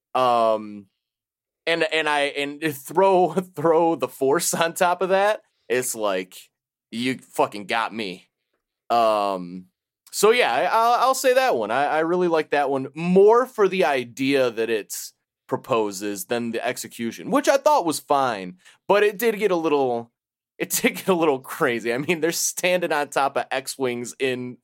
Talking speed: 170 wpm